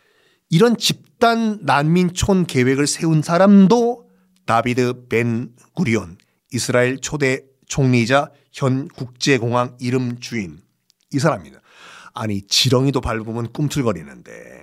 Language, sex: Korean, male